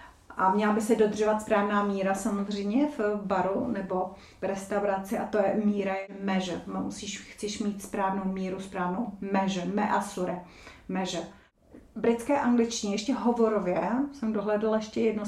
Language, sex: Czech, female